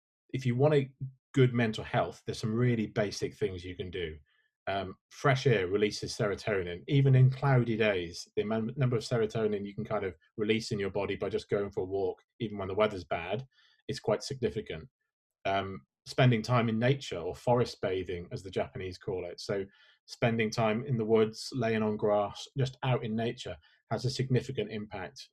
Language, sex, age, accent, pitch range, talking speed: English, male, 30-49, British, 105-125 Hz, 190 wpm